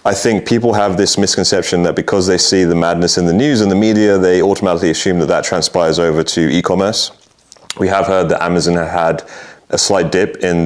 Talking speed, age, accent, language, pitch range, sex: 210 wpm, 30-49, British, English, 85-100 Hz, male